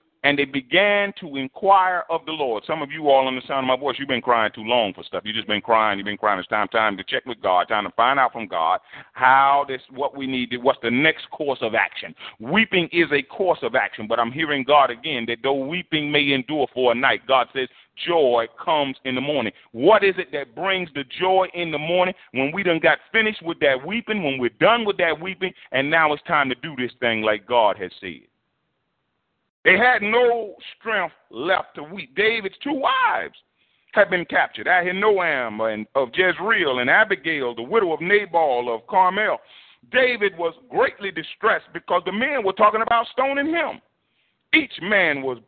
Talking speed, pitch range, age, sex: 210 wpm, 130-200 Hz, 40-59, male